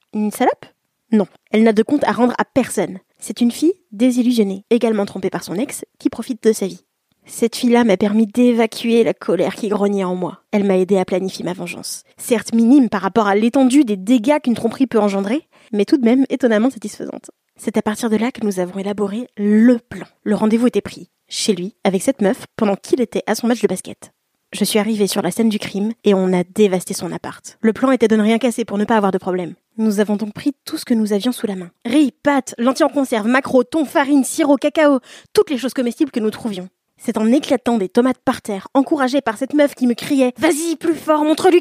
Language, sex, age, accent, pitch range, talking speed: French, female, 20-39, French, 210-275 Hz, 235 wpm